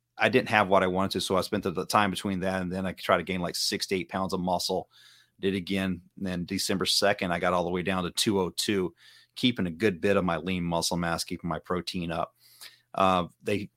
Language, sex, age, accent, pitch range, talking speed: English, male, 30-49, American, 95-110 Hz, 255 wpm